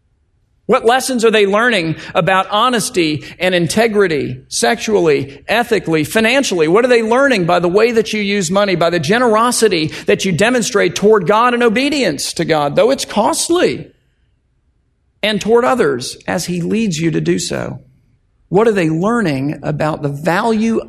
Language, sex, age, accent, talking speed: English, male, 50-69, American, 160 wpm